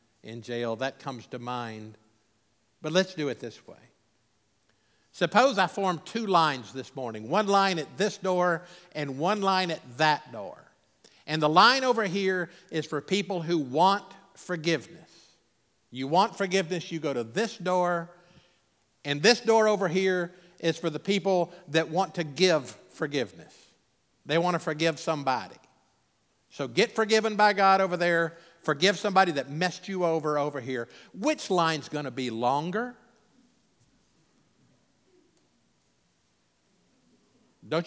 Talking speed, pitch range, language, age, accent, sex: 145 wpm, 130-190 Hz, English, 50-69, American, male